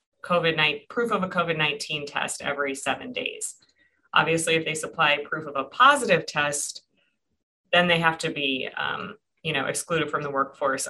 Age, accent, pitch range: 20-39, American, 145-170 Hz